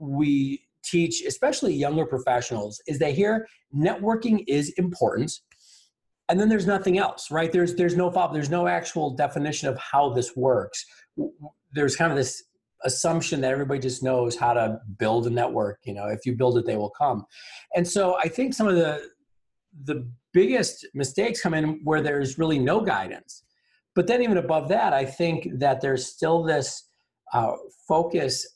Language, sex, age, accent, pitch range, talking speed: English, male, 40-59, American, 120-160 Hz, 170 wpm